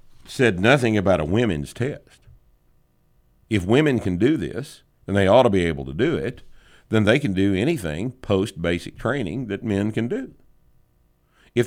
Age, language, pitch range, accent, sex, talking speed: 50-69, English, 75-115 Hz, American, male, 165 wpm